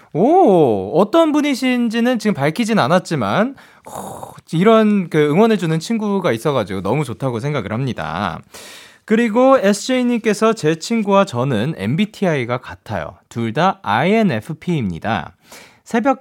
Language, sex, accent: Korean, male, native